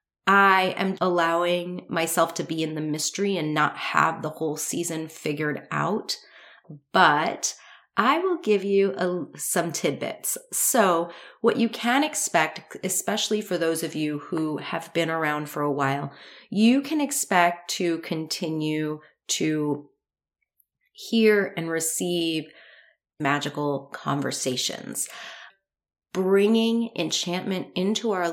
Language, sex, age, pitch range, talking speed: English, female, 30-49, 150-185 Hz, 120 wpm